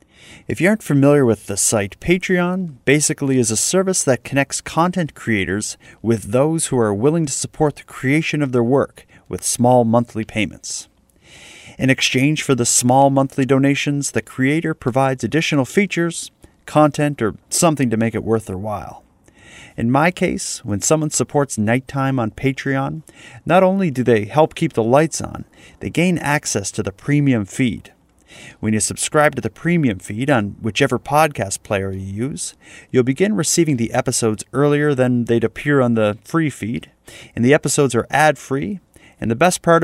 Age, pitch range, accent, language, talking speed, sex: 30-49, 115-155 Hz, American, English, 170 wpm, male